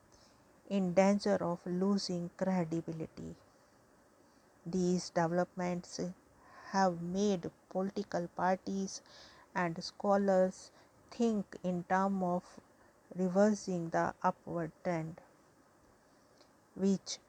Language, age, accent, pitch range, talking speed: English, 50-69, Indian, 175-200 Hz, 75 wpm